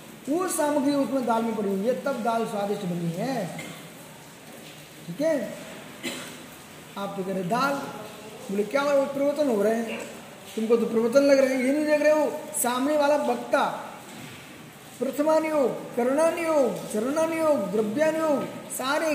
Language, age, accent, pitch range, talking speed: Hindi, 20-39, native, 240-295 Hz, 65 wpm